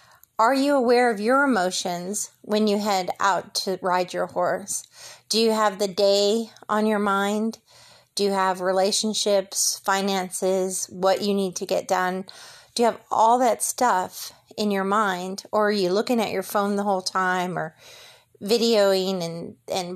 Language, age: English, 30-49